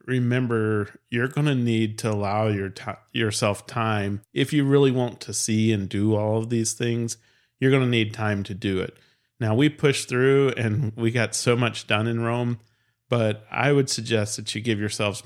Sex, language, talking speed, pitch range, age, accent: male, English, 200 wpm, 105-120 Hz, 40-59, American